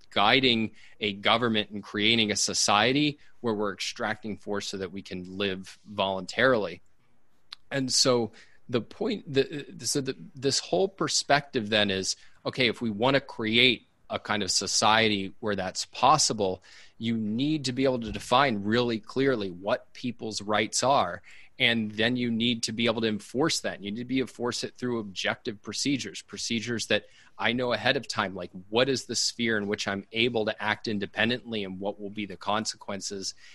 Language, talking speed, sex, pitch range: English, 175 wpm, male, 100-125 Hz